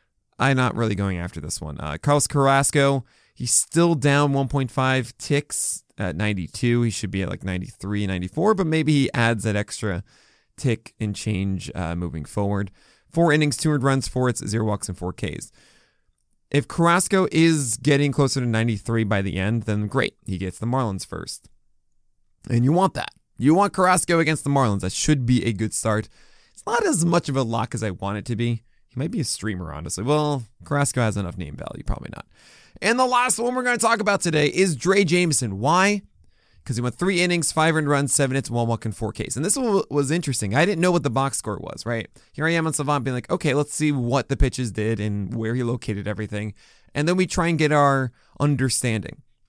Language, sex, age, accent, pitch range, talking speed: English, male, 20-39, American, 110-150 Hz, 215 wpm